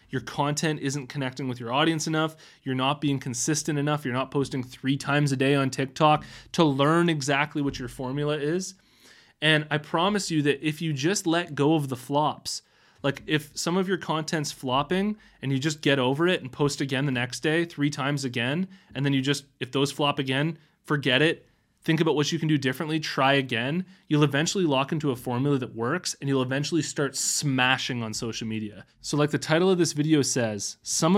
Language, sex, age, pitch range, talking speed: English, male, 20-39, 125-155 Hz, 210 wpm